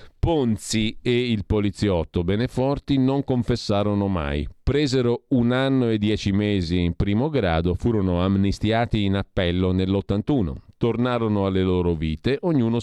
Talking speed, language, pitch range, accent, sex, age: 125 wpm, Italian, 85-115 Hz, native, male, 50-69